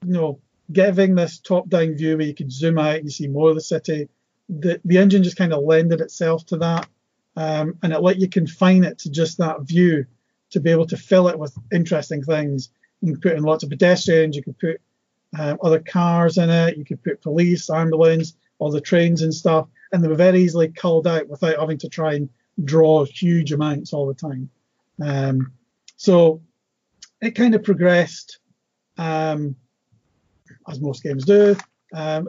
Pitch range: 150-175 Hz